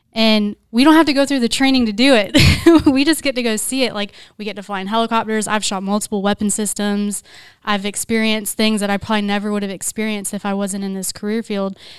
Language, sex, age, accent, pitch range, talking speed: English, female, 20-39, American, 200-235 Hz, 240 wpm